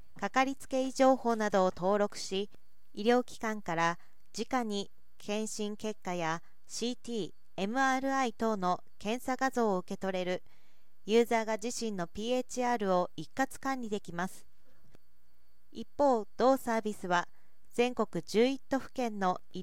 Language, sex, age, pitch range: Japanese, female, 40-59, 190-250 Hz